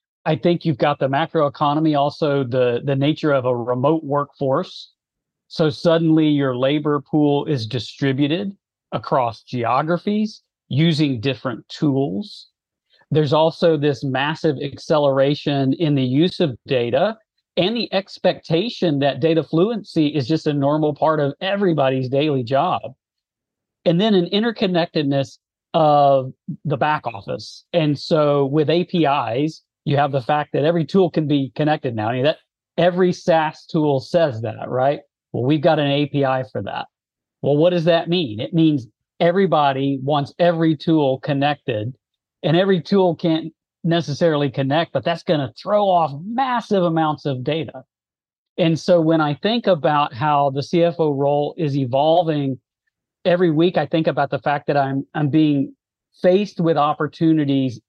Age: 40-59